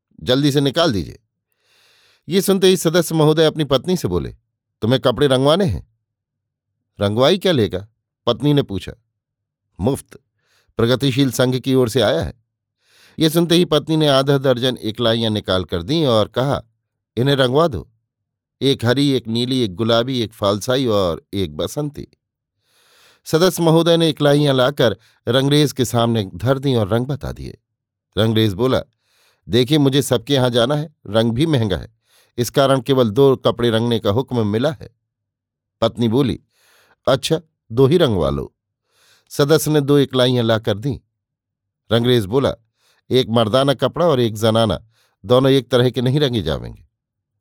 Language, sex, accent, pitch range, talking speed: Hindi, male, native, 115-145 Hz, 155 wpm